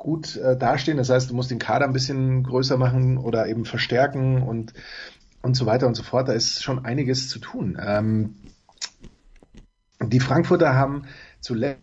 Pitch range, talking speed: 125-140 Hz, 170 wpm